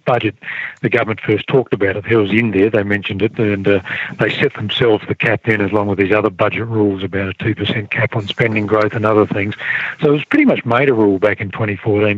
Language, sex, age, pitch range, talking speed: English, male, 40-59, 100-115 Hz, 250 wpm